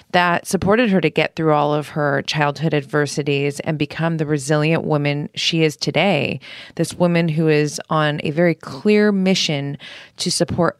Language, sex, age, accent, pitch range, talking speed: English, female, 20-39, American, 145-170 Hz, 165 wpm